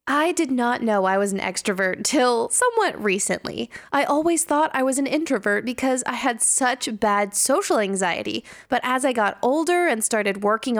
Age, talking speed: 20-39, 185 wpm